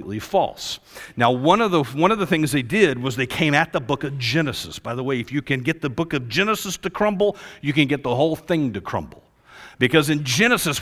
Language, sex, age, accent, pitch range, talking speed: English, male, 50-69, American, 130-205 Hz, 240 wpm